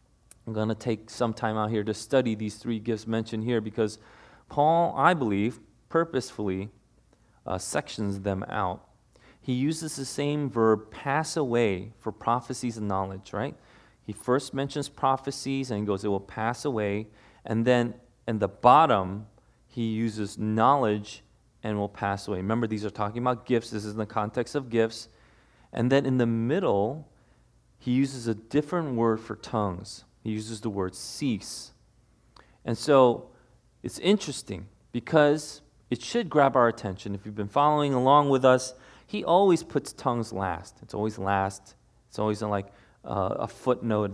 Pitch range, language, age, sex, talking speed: 105-130 Hz, English, 30-49, male, 165 wpm